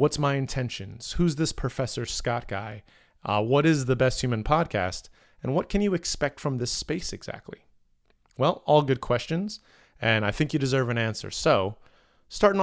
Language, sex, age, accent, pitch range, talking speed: English, male, 30-49, American, 105-135 Hz, 175 wpm